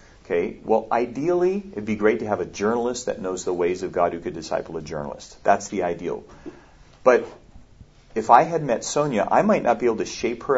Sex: male